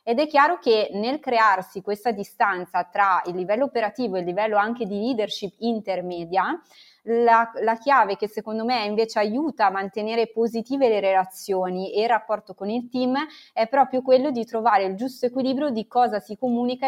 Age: 20-39